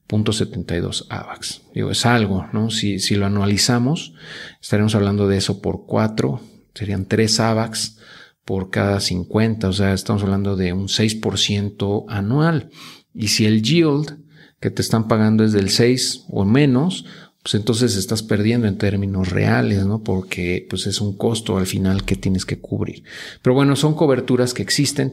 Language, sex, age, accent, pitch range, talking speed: Spanish, male, 40-59, Mexican, 100-125 Hz, 160 wpm